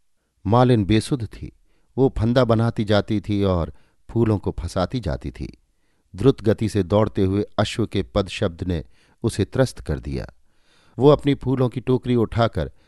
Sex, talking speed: male, 160 wpm